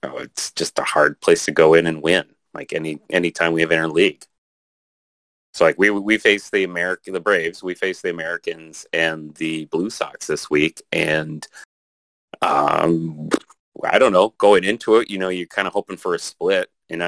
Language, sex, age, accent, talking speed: English, male, 30-49, American, 200 wpm